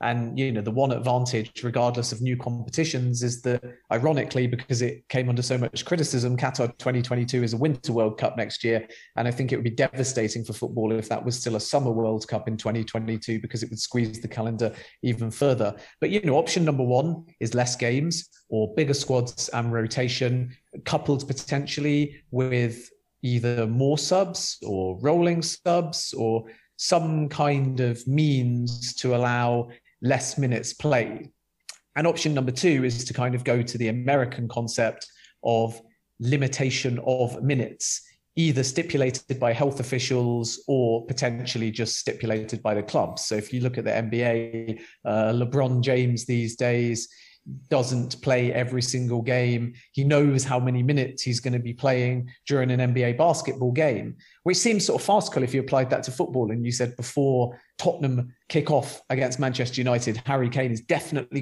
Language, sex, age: English, male, 30-49